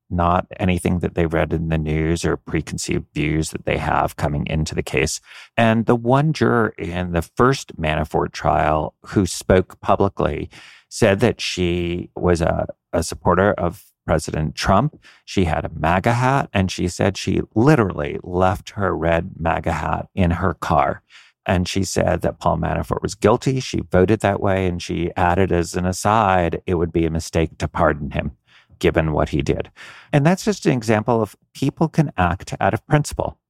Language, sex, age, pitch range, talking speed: English, male, 50-69, 80-105 Hz, 180 wpm